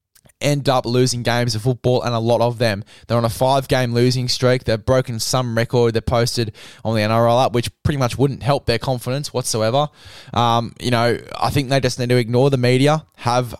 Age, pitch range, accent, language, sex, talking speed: 10-29, 115-130 Hz, Australian, English, male, 210 wpm